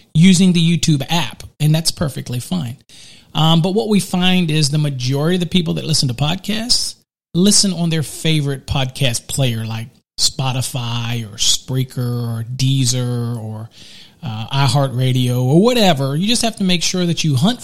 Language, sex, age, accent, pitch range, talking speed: English, male, 40-59, American, 130-170 Hz, 165 wpm